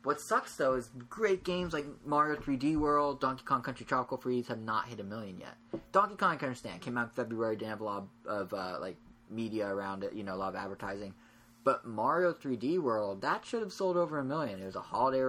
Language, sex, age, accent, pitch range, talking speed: English, male, 20-39, American, 110-135 Hz, 240 wpm